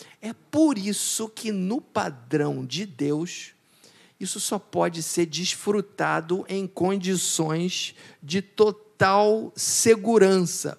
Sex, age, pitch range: male, 50-69, 155-205 Hz